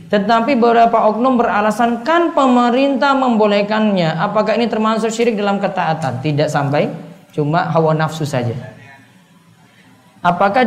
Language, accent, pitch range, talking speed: Indonesian, native, 165-220 Hz, 105 wpm